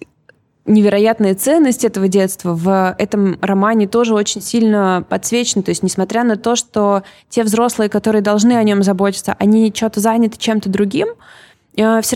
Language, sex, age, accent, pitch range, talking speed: Russian, female, 20-39, native, 200-250 Hz, 150 wpm